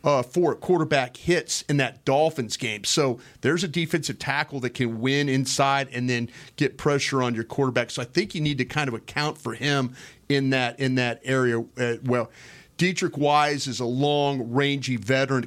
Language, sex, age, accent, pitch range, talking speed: English, male, 40-59, American, 120-145 Hz, 190 wpm